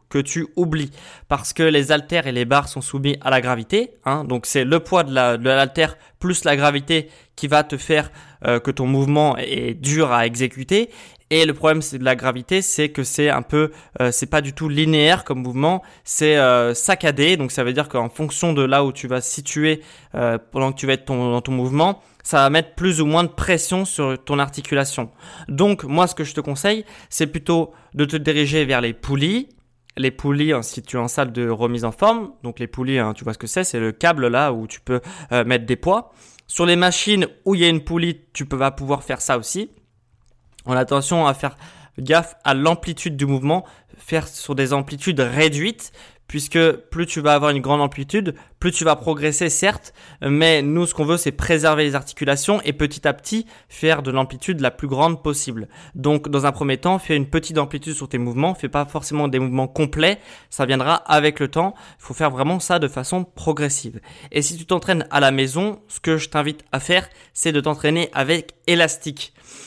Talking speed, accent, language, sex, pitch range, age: 220 wpm, French, French, male, 135-165 Hz, 20-39